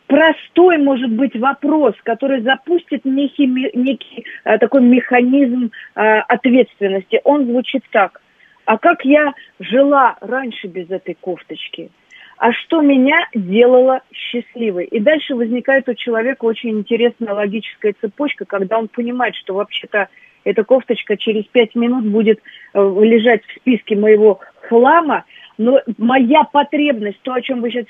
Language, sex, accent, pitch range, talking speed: Russian, female, native, 230-290 Hz, 135 wpm